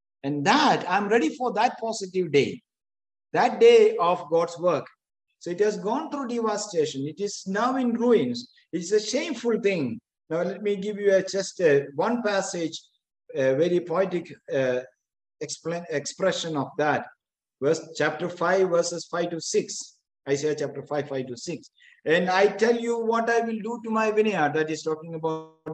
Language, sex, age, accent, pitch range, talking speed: English, male, 50-69, Indian, 155-220 Hz, 165 wpm